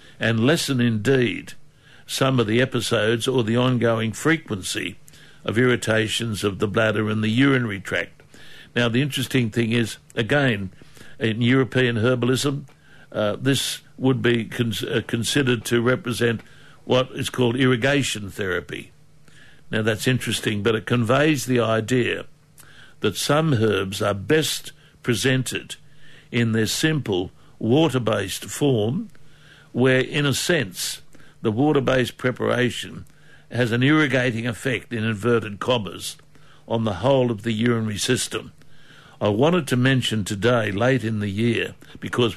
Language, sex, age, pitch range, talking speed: English, male, 60-79, 115-135 Hz, 130 wpm